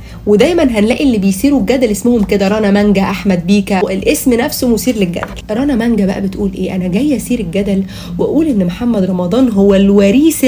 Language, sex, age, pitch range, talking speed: Arabic, female, 30-49, 190-240 Hz, 170 wpm